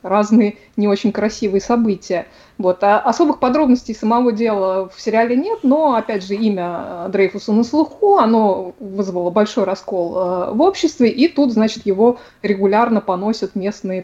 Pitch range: 195-240 Hz